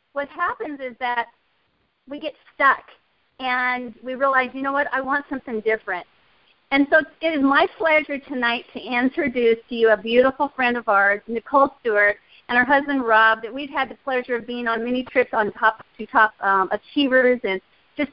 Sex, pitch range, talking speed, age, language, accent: female, 220-275 Hz, 190 wpm, 40-59, English, American